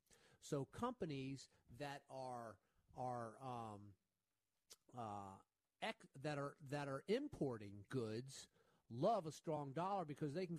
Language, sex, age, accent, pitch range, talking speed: English, male, 40-59, American, 130-170 Hz, 120 wpm